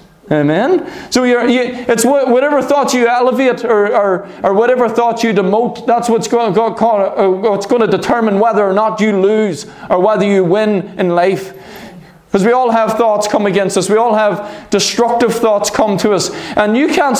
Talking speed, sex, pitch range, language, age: 190 wpm, male, 195-255 Hz, English, 20-39